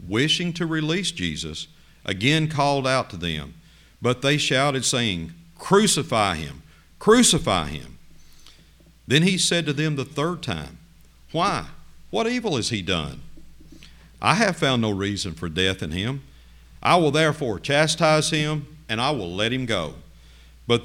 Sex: male